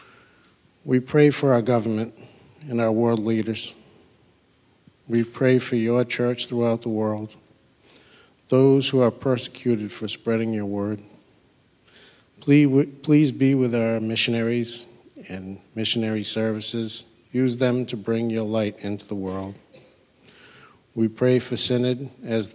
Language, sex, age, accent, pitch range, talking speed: English, male, 50-69, American, 110-120 Hz, 125 wpm